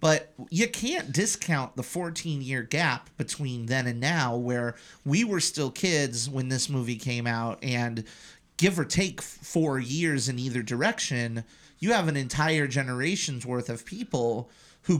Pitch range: 125-160 Hz